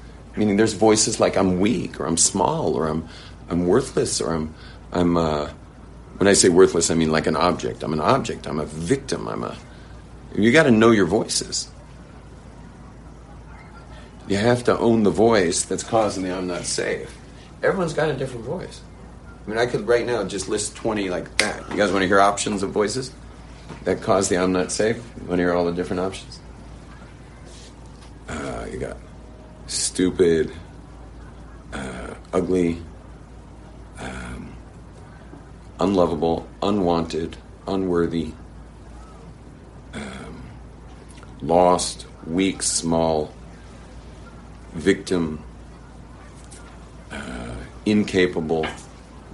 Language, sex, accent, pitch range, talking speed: English, male, American, 80-100 Hz, 130 wpm